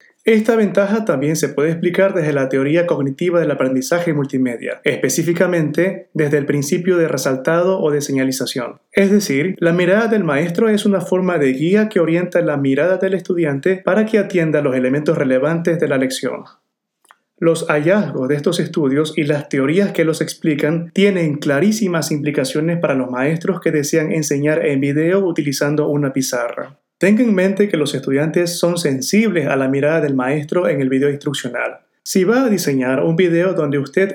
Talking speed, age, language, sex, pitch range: 170 wpm, 30-49, Spanish, male, 145-185 Hz